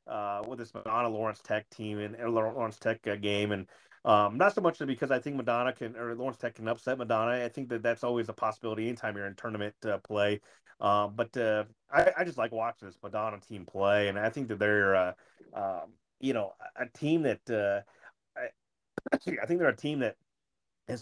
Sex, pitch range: male, 100-120 Hz